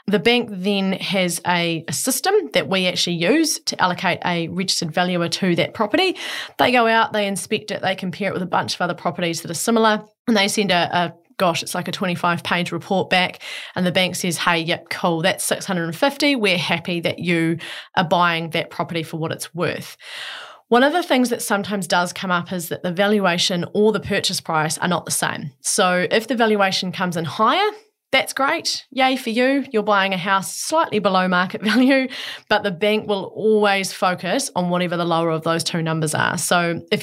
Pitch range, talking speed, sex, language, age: 175-215 Hz, 205 wpm, female, English, 20-39